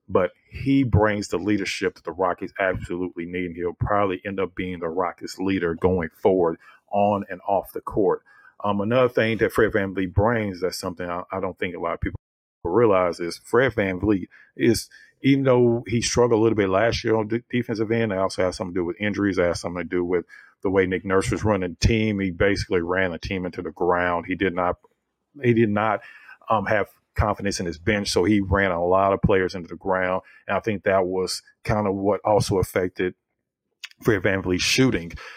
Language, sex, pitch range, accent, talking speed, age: English, male, 90-110 Hz, American, 220 wpm, 40-59